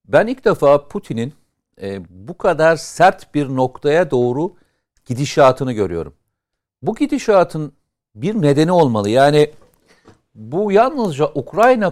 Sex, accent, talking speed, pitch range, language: male, native, 110 wpm, 125-175 Hz, Turkish